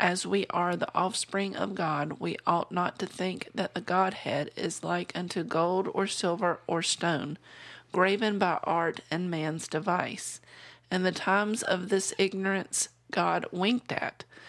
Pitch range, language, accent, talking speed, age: 175-210 Hz, English, American, 155 wpm, 40-59